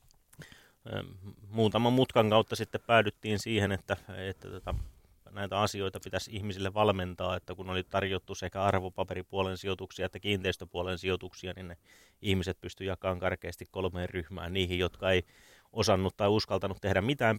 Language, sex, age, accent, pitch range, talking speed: Finnish, male, 30-49, native, 90-100 Hz, 140 wpm